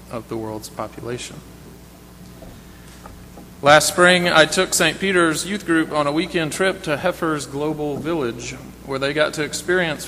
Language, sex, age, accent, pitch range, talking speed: English, male, 40-59, American, 115-155 Hz, 150 wpm